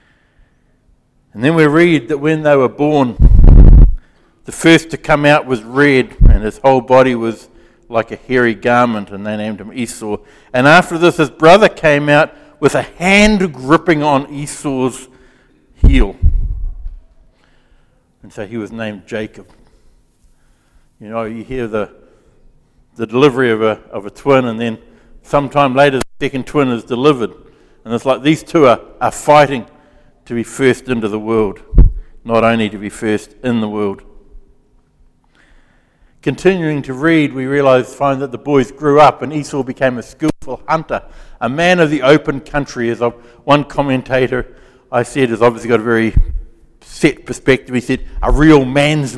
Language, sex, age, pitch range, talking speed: English, male, 60-79, 115-145 Hz, 160 wpm